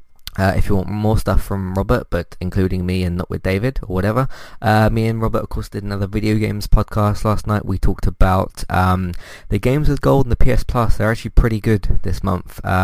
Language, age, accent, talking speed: English, 20-39, British, 230 wpm